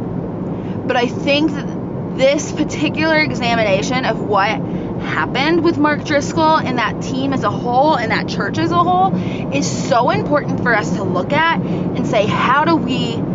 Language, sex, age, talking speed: English, female, 20-39, 170 wpm